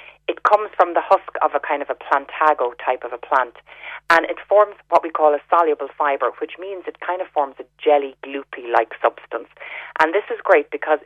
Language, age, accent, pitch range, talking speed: English, 30-49, Irish, 135-165 Hz, 210 wpm